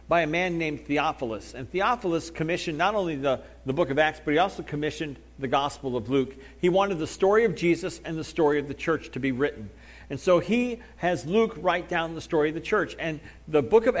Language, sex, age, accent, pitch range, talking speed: English, male, 40-59, American, 135-180 Hz, 230 wpm